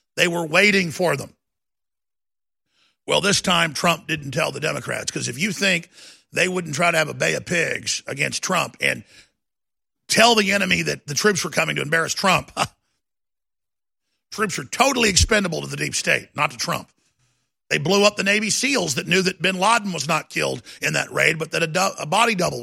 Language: English